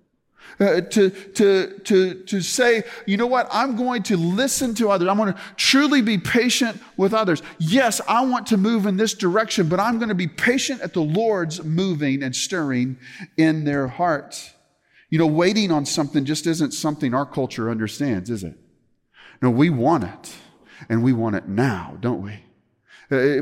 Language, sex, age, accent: English, male, 40-59, American